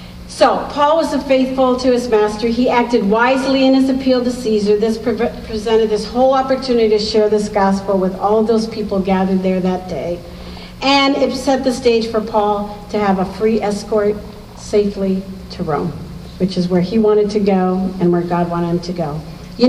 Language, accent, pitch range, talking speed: English, American, 185-225 Hz, 200 wpm